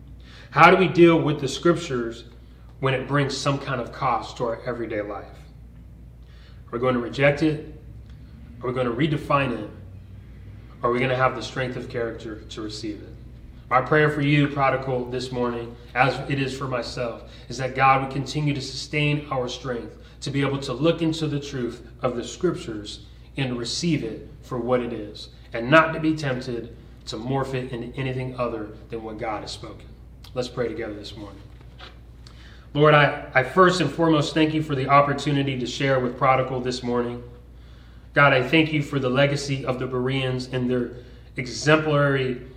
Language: English